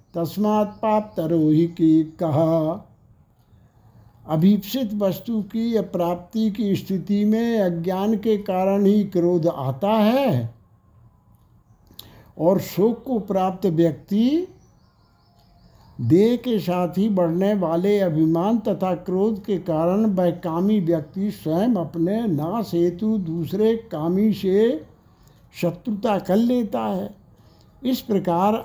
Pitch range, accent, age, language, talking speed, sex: 165-210 Hz, native, 60-79, Hindi, 105 wpm, male